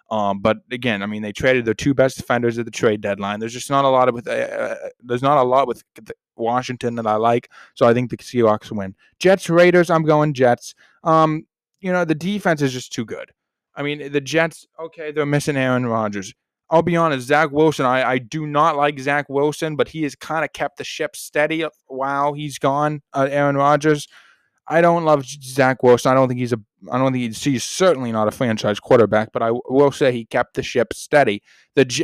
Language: English